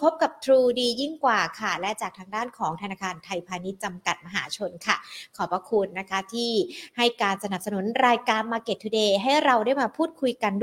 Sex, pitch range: female, 200-265 Hz